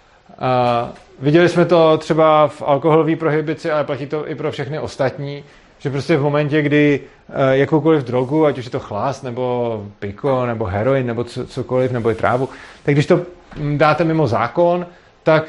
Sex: male